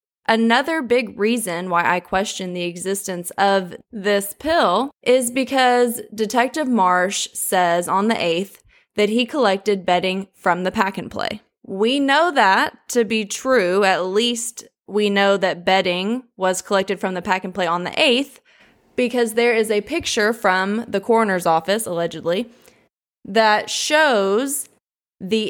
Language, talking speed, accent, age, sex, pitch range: English, 150 wpm, American, 20-39, female, 185-235 Hz